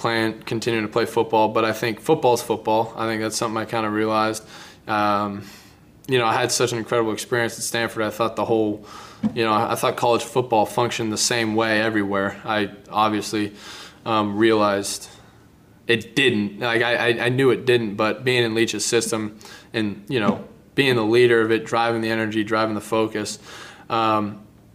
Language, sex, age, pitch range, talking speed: English, male, 20-39, 110-115 Hz, 185 wpm